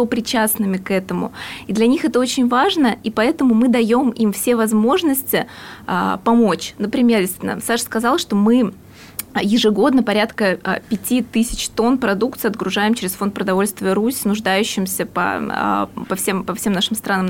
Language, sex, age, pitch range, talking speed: Russian, female, 20-39, 200-230 Hz, 135 wpm